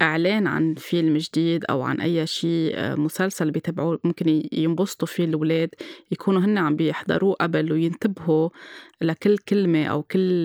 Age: 20-39